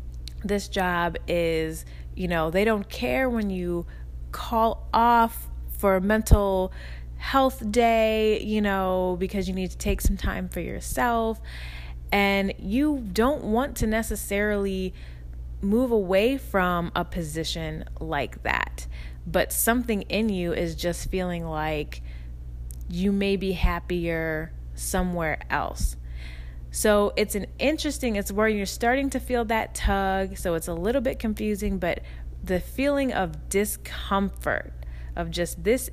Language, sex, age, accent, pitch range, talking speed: English, female, 20-39, American, 160-215 Hz, 135 wpm